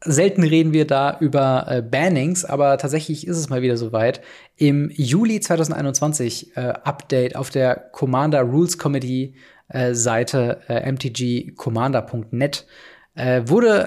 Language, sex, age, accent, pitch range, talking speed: German, male, 20-39, German, 125-155 Hz, 130 wpm